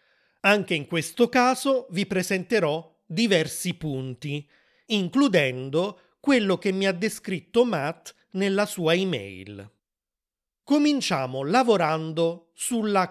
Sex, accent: male, native